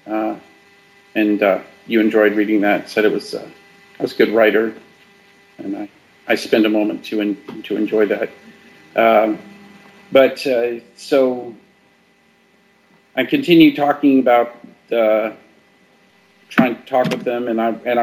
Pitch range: 110-135 Hz